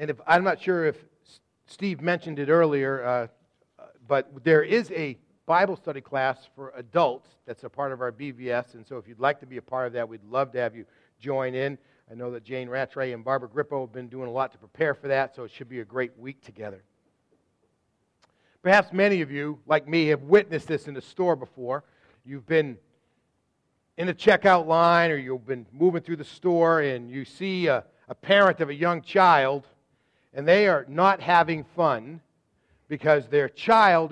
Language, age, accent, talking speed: English, 40-59, American, 200 wpm